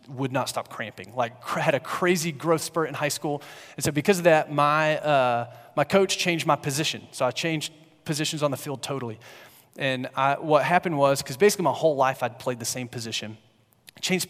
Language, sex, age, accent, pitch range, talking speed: English, male, 30-49, American, 130-160 Hz, 210 wpm